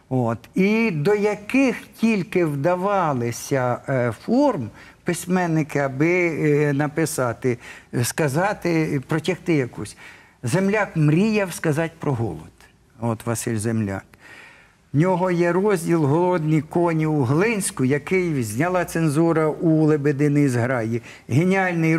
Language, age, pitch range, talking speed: Ukrainian, 50-69, 130-180 Hz, 105 wpm